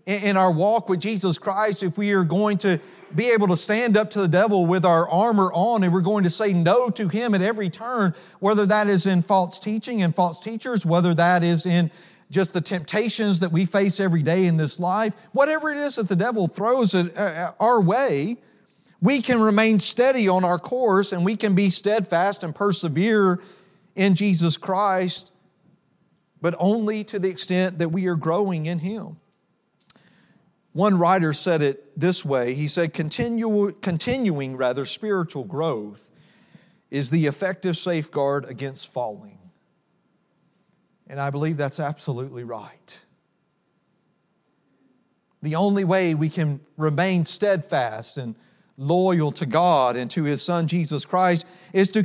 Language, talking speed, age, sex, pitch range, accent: English, 160 wpm, 40-59, male, 170-205 Hz, American